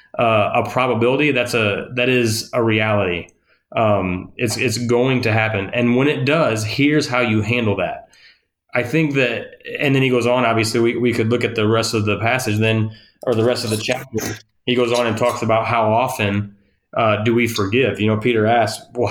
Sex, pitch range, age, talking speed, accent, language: male, 110-135 Hz, 20-39, 210 wpm, American, English